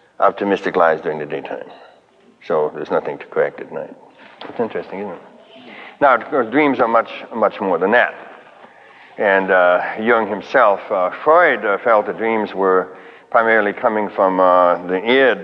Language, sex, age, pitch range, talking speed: English, male, 60-79, 95-160 Hz, 160 wpm